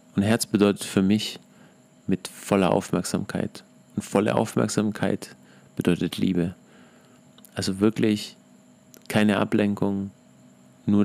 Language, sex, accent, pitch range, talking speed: German, male, German, 85-105 Hz, 100 wpm